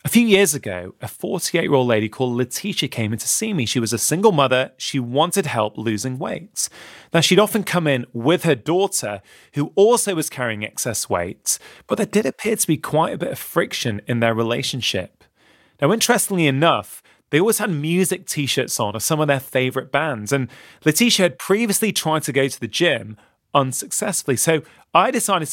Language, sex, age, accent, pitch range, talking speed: English, male, 30-49, British, 125-190 Hz, 190 wpm